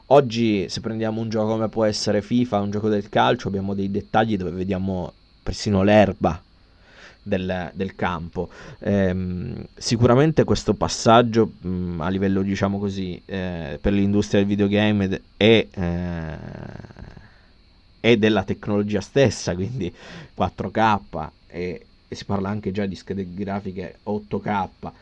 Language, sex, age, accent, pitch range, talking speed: Italian, male, 20-39, native, 95-115 Hz, 130 wpm